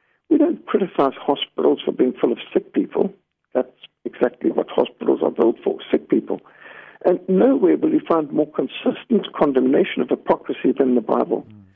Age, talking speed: 60-79, 165 wpm